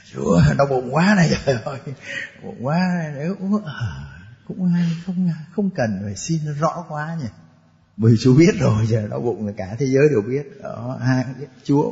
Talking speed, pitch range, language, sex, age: 190 wpm, 110-140 Hz, Vietnamese, male, 20-39